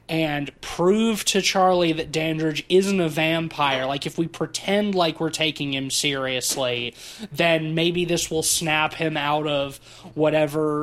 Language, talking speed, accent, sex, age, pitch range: English, 150 wpm, American, male, 20-39, 135-175 Hz